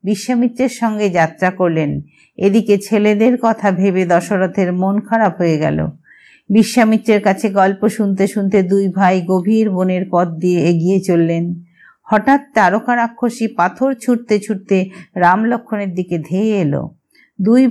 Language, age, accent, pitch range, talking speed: Hindi, 50-69, native, 180-215 Hz, 115 wpm